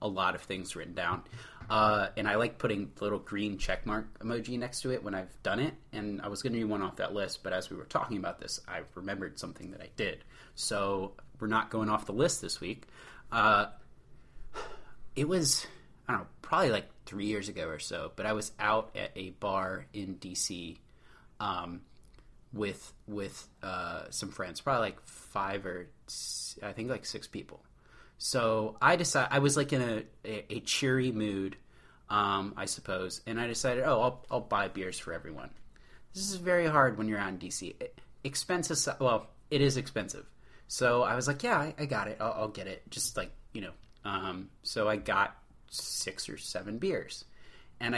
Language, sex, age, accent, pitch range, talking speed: English, male, 30-49, American, 100-130 Hz, 195 wpm